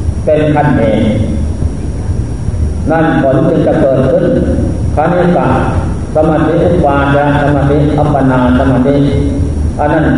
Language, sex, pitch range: Thai, male, 100-145 Hz